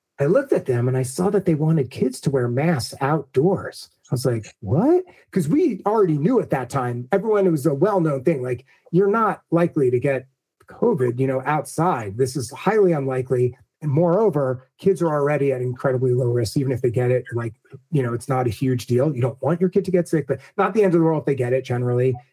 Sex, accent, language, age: male, American, English, 30-49